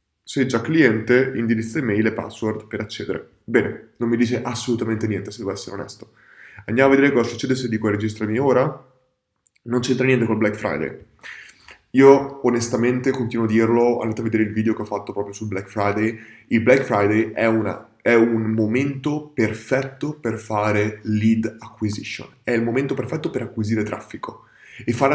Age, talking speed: 20-39, 175 wpm